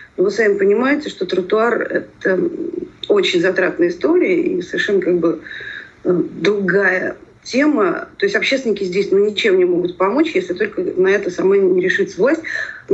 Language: Russian